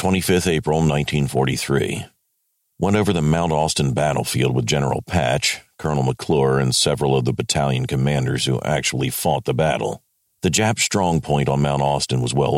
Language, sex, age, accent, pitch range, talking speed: English, male, 50-69, American, 65-80 Hz, 160 wpm